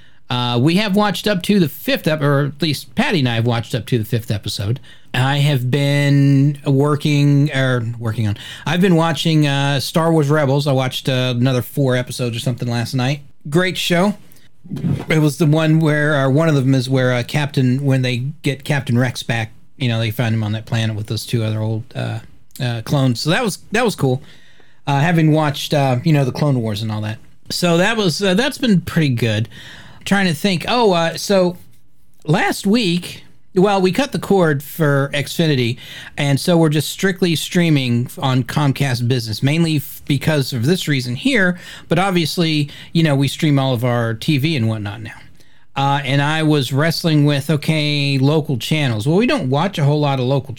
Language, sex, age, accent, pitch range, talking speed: English, male, 40-59, American, 125-160 Hz, 205 wpm